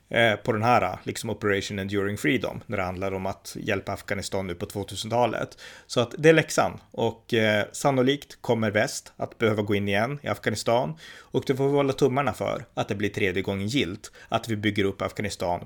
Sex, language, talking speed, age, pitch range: male, Swedish, 200 wpm, 30-49, 100-120 Hz